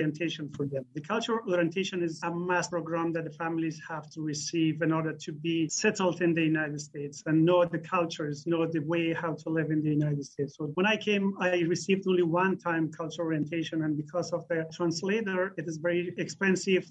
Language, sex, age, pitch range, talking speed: English, male, 30-49, 160-180 Hz, 210 wpm